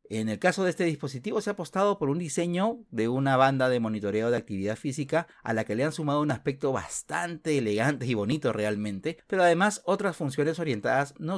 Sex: male